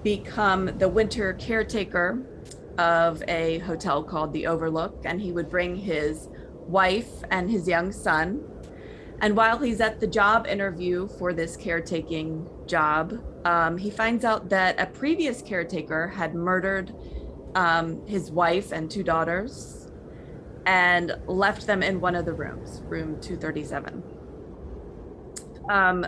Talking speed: 135 wpm